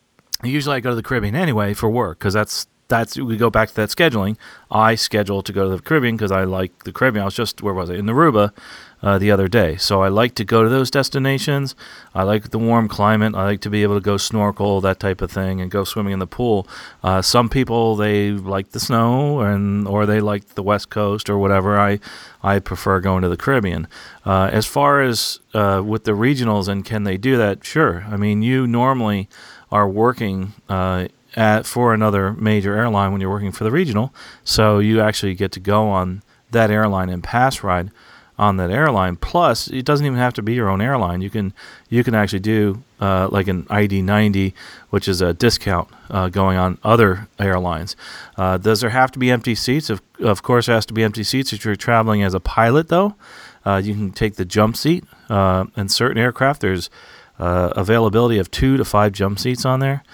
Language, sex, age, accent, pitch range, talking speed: English, male, 40-59, American, 95-115 Hz, 220 wpm